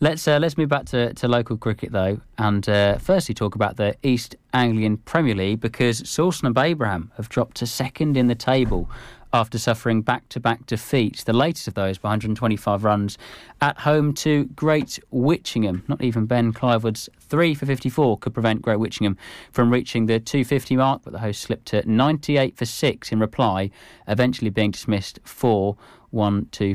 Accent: British